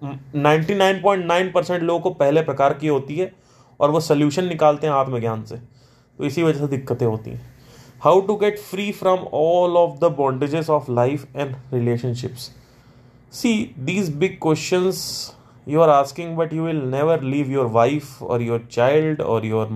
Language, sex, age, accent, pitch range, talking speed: Hindi, male, 20-39, native, 125-170 Hz, 165 wpm